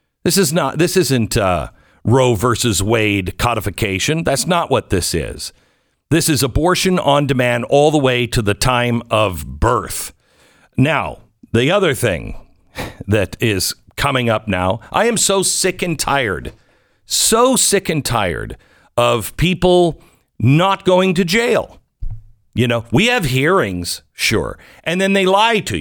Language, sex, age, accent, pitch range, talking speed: English, male, 50-69, American, 110-175 Hz, 150 wpm